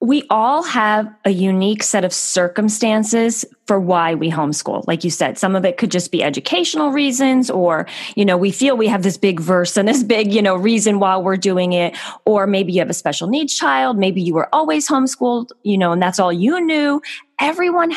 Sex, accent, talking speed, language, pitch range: female, American, 215 wpm, English, 180-250 Hz